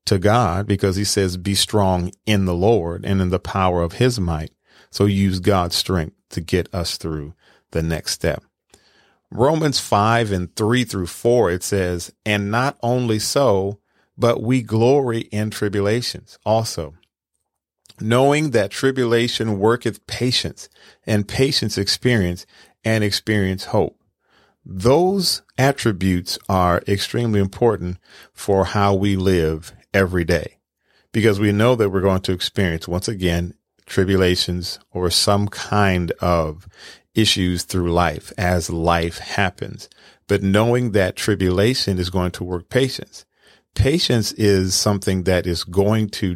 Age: 40-59